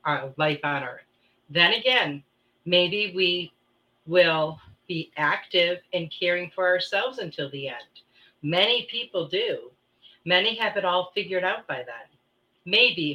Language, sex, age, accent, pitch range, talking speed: English, female, 40-59, American, 145-185 Hz, 135 wpm